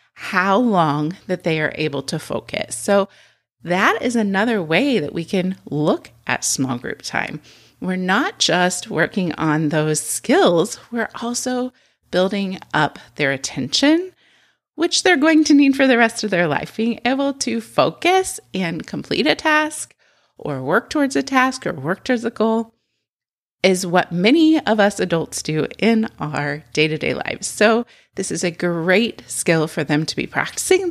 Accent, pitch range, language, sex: American, 150-230 Hz, English, female